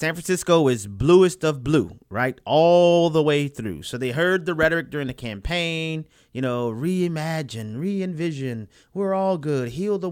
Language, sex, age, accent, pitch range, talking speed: English, male, 30-49, American, 130-170 Hz, 170 wpm